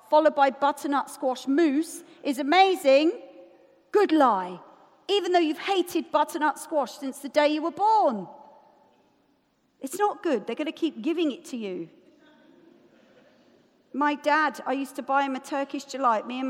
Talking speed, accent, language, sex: 160 wpm, British, English, female